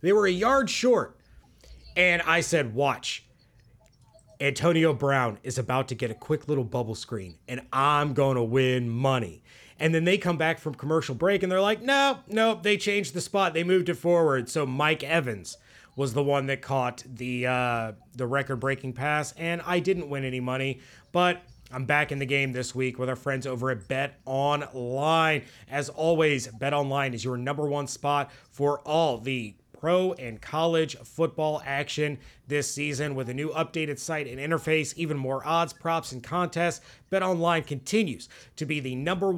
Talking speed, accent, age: 185 wpm, American, 30-49